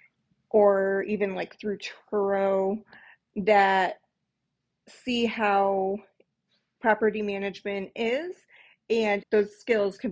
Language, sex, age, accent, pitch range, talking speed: English, female, 30-49, American, 200-265 Hz, 90 wpm